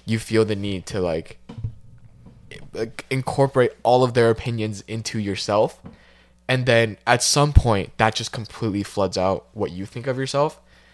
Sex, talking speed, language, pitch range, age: male, 155 wpm, English, 90-115 Hz, 20-39